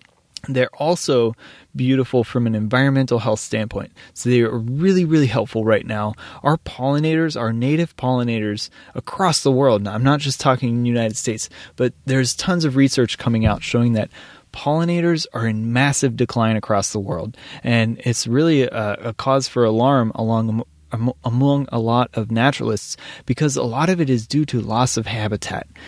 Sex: male